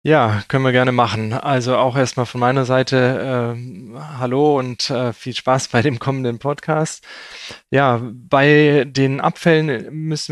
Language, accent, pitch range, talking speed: German, German, 120-140 Hz, 150 wpm